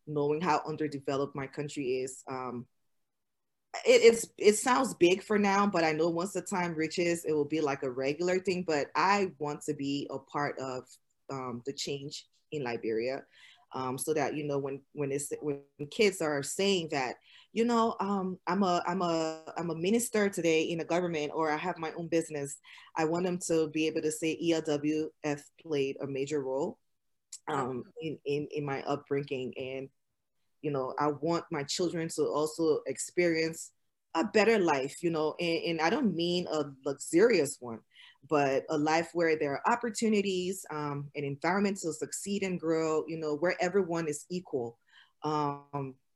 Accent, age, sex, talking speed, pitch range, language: American, 20-39, female, 180 wpm, 140-175 Hz, English